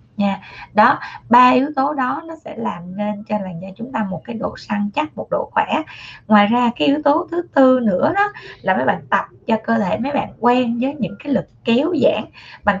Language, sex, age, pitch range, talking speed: Vietnamese, female, 20-39, 195-255 Hz, 230 wpm